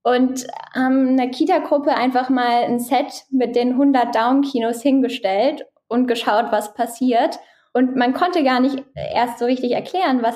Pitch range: 230-270 Hz